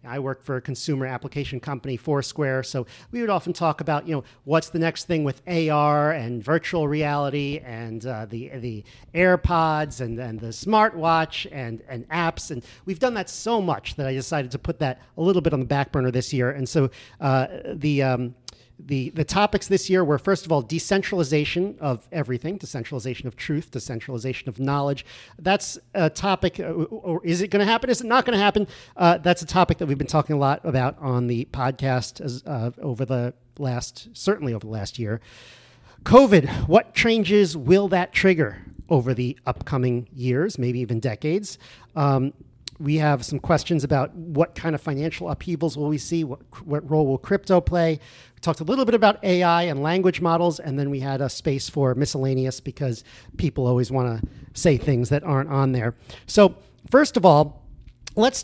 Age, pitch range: 40-59, 125-170 Hz